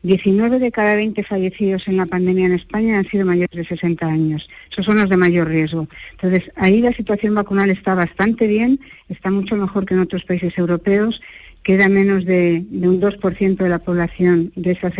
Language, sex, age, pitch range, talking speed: Spanish, female, 50-69, 175-210 Hz, 195 wpm